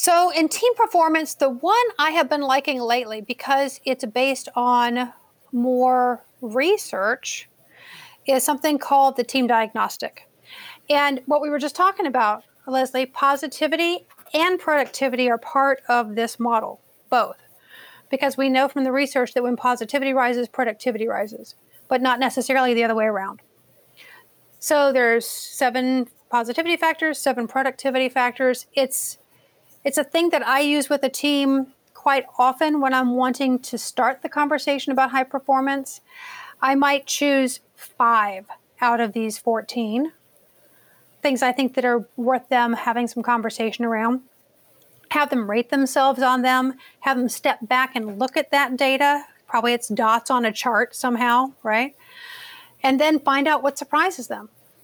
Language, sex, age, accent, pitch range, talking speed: English, female, 40-59, American, 245-290 Hz, 150 wpm